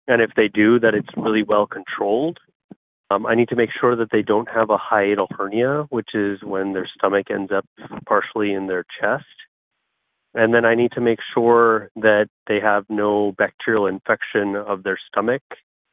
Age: 30-49